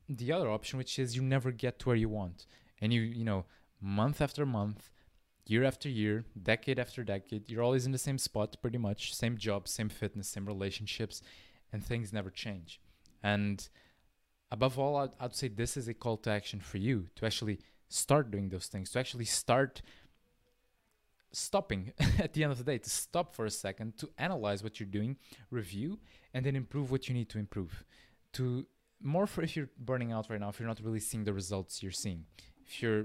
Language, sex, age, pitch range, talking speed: English, male, 20-39, 100-125 Hz, 205 wpm